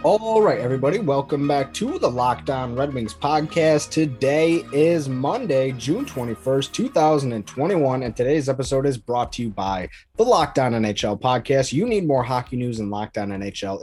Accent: American